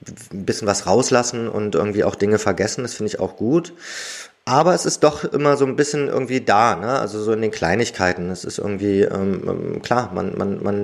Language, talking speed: German, 210 wpm